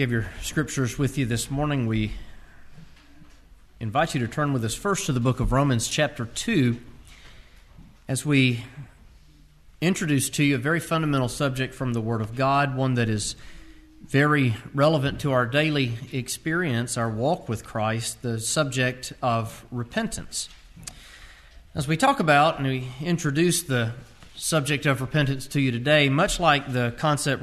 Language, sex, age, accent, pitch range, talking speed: English, male, 40-59, American, 120-150 Hz, 155 wpm